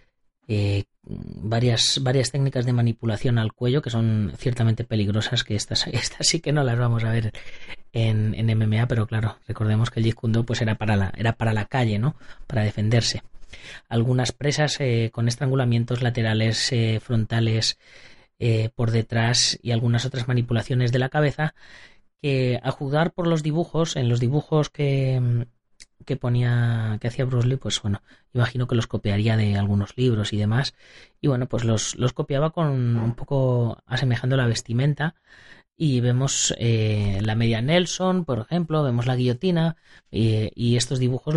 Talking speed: 165 wpm